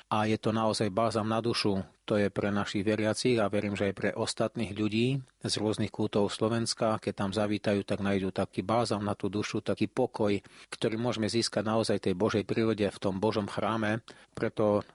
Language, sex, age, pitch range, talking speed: Slovak, male, 30-49, 100-115 Hz, 190 wpm